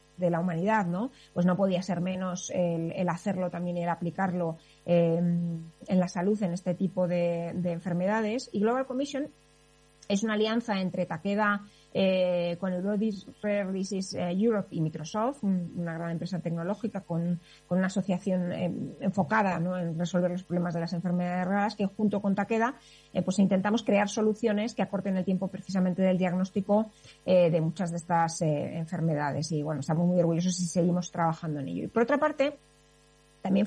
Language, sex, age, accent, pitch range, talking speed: Spanish, female, 30-49, Spanish, 175-205 Hz, 180 wpm